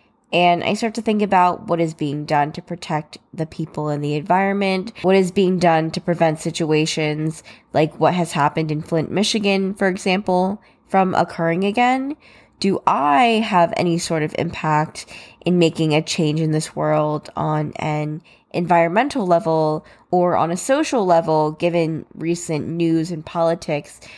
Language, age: English, 10-29